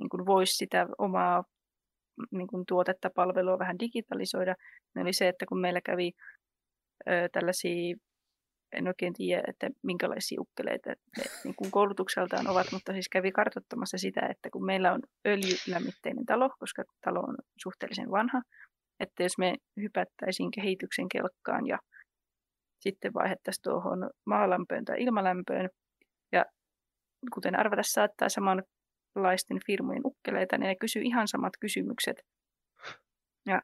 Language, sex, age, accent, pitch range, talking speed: Finnish, female, 20-39, native, 185-235 Hz, 130 wpm